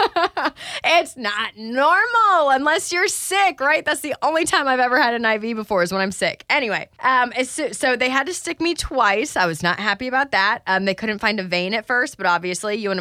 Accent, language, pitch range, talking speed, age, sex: American, English, 185-255 Hz, 220 wpm, 20-39, female